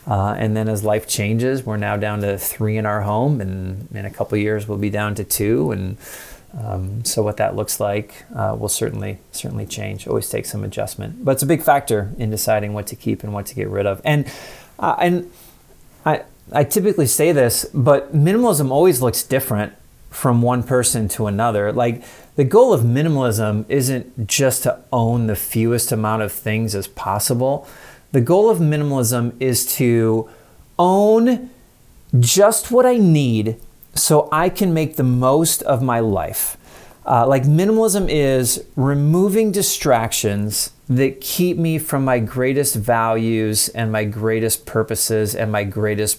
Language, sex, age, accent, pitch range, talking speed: English, male, 30-49, American, 105-140 Hz, 170 wpm